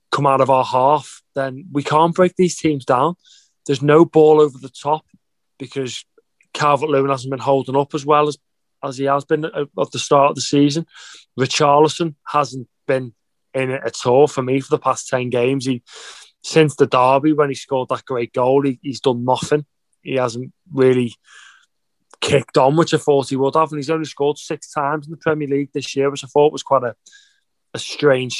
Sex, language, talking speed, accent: male, English, 205 wpm, British